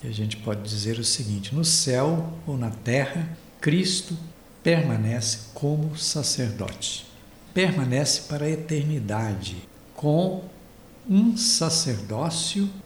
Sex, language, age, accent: male, Portuguese, 60-79, Brazilian